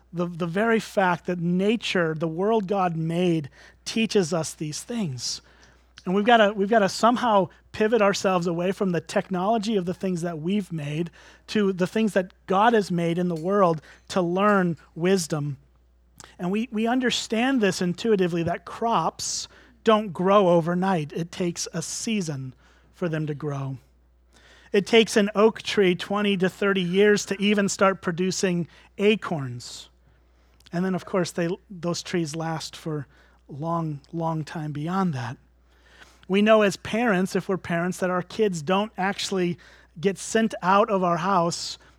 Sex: male